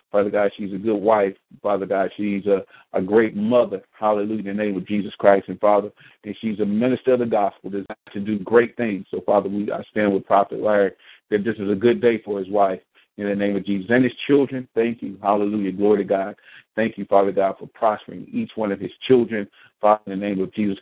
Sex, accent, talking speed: male, American, 235 wpm